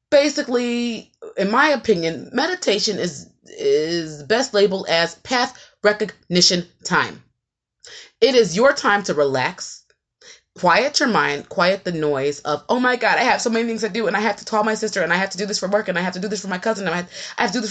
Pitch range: 155-250 Hz